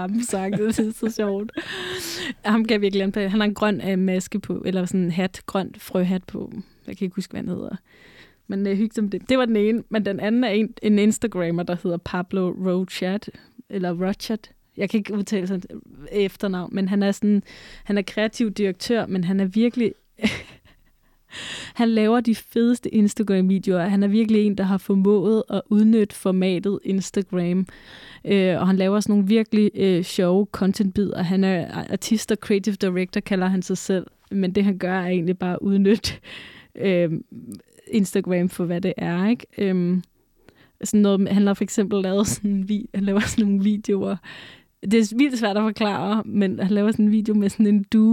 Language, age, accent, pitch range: Danish, 20-39, native, 190-215 Hz